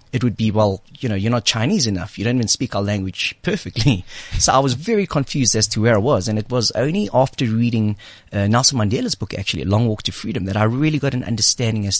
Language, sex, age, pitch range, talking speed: English, male, 30-49, 100-125 Hz, 245 wpm